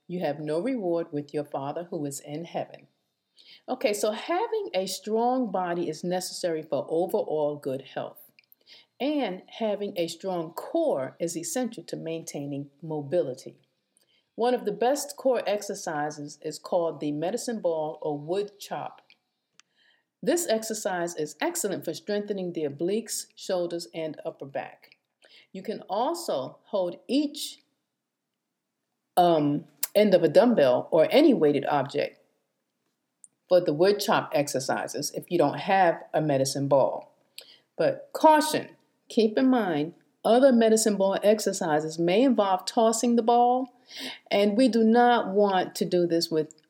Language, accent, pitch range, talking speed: English, American, 165-230 Hz, 140 wpm